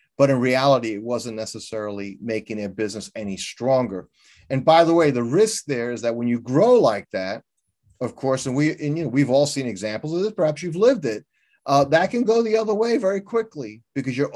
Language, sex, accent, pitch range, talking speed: English, male, American, 120-160 Hz, 220 wpm